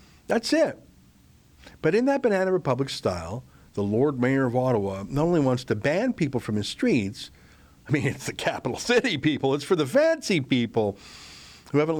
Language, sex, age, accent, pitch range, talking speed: English, male, 50-69, American, 100-140 Hz, 180 wpm